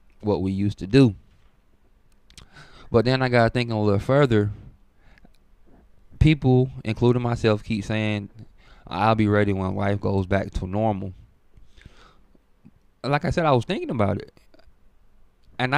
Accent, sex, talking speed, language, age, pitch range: American, male, 135 wpm, English, 20-39, 95-110 Hz